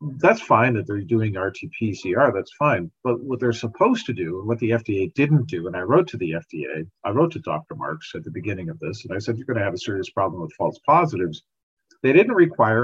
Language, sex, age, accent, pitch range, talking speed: English, male, 50-69, American, 110-145 Hz, 245 wpm